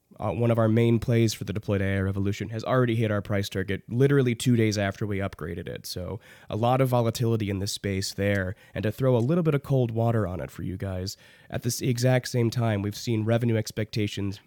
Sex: male